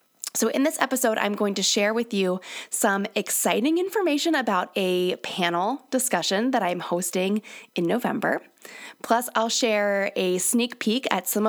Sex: female